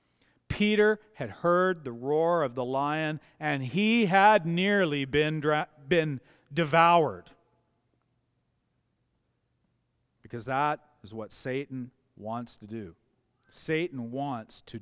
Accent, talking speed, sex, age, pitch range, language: American, 110 wpm, male, 40-59, 125-175 Hz, English